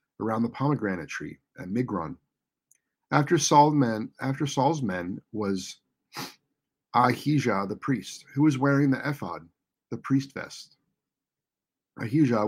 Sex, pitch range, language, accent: male, 115-150 Hz, English, American